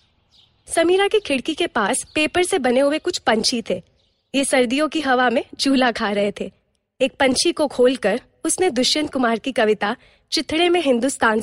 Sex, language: female, Hindi